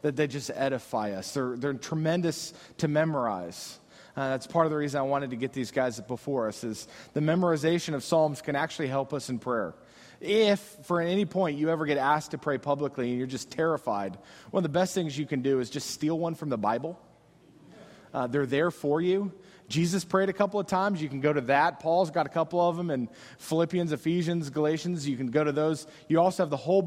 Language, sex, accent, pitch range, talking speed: English, male, American, 140-185 Hz, 225 wpm